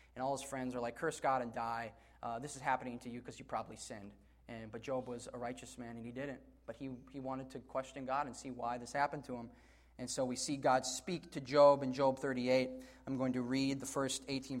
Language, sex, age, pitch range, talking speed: English, male, 20-39, 125-170 Hz, 255 wpm